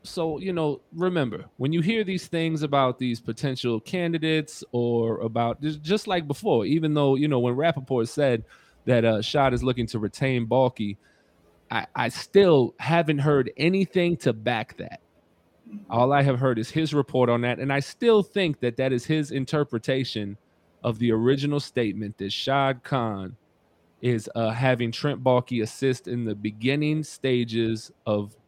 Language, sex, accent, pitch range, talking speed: English, male, American, 110-145 Hz, 165 wpm